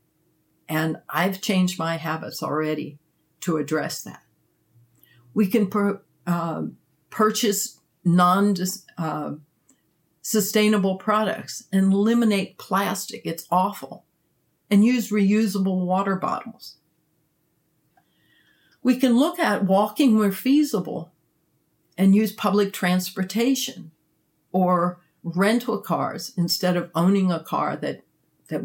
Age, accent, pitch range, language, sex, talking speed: 60-79, American, 160-200 Hz, English, female, 100 wpm